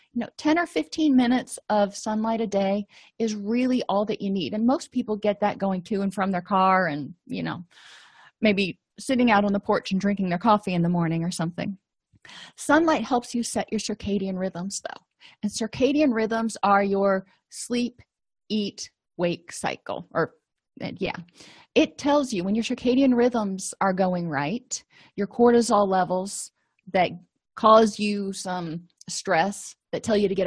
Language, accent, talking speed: English, American, 170 wpm